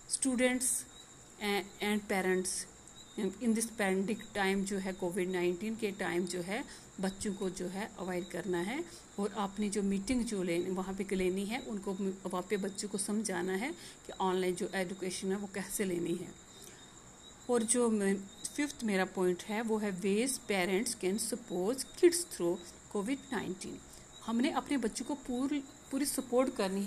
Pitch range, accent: 190-230 Hz, Indian